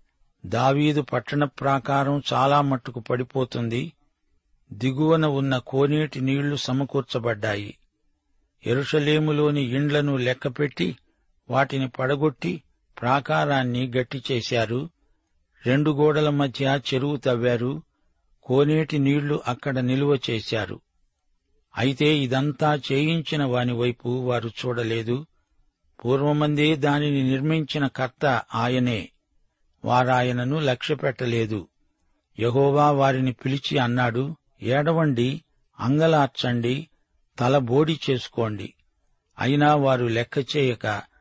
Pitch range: 120-145 Hz